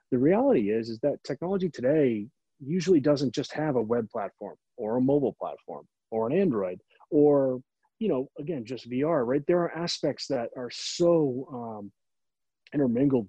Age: 30-49